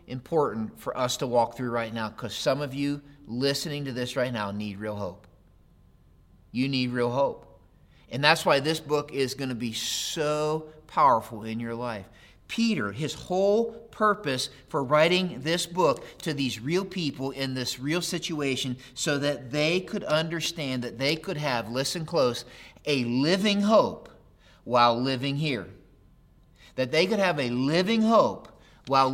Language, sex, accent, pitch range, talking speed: English, male, American, 125-165 Hz, 165 wpm